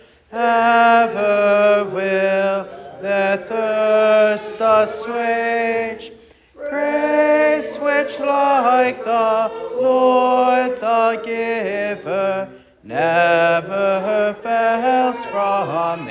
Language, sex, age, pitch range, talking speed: English, male, 30-49, 170-230 Hz, 55 wpm